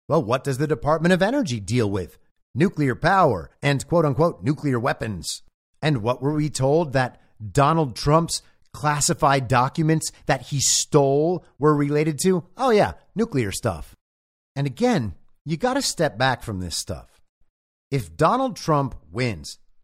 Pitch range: 130-175 Hz